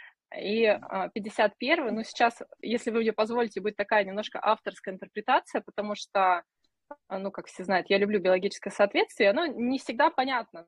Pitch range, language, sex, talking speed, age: 185-240 Hz, Russian, female, 150 wpm, 20-39